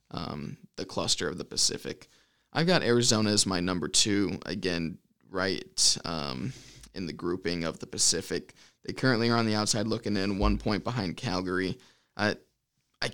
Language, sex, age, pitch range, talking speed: English, male, 20-39, 95-115 Hz, 165 wpm